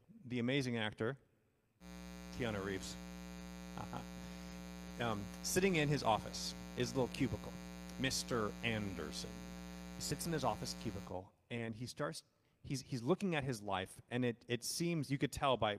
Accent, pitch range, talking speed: American, 105-135 Hz, 150 wpm